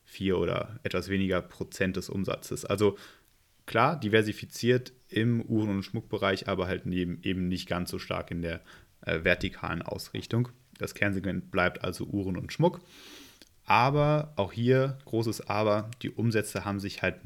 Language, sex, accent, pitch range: German, male, German, 95-120 Hz